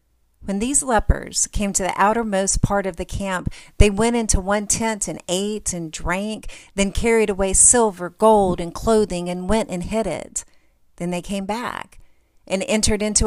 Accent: American